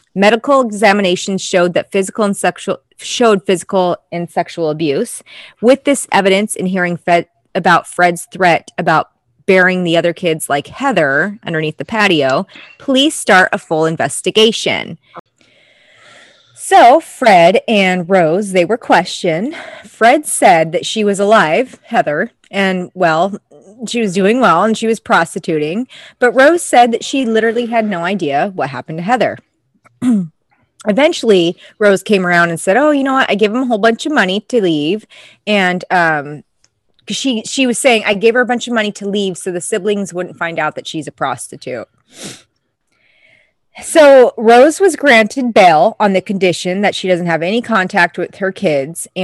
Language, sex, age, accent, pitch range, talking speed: English, female, 20-39, American, 175-230 Hz, 165 wpm